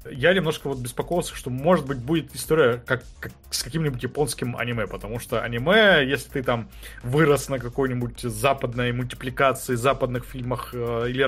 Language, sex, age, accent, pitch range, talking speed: Russian, male, 20-39, native, 125-155 Hz, 155 wpm